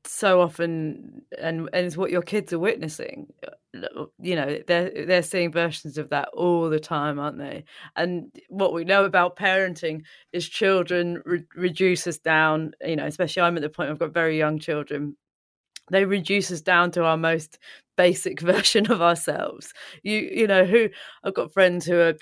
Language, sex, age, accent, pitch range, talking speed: English, female, 30-49, British, 165-190 Hz, 180 wpm